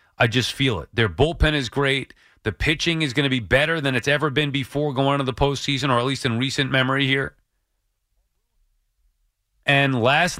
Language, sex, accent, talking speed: English, male, American, 190 wpm